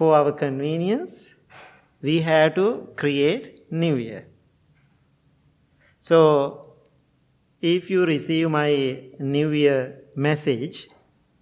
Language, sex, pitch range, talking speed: English, male, 135-165 Hz, 90 wpm